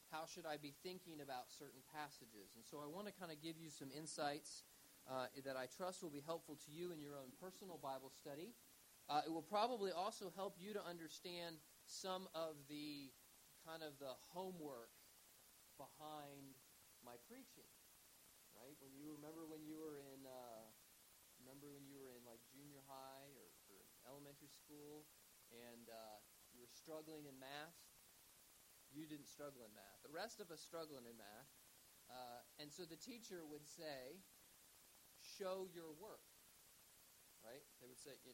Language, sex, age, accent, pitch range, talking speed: English, male, 30-49, American, 130-165 Hz, 170 wpm